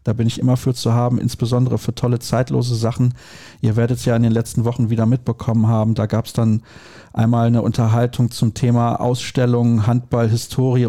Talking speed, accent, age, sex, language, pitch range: 185 wpm, German, 40-59, male, German, 110-125 Hz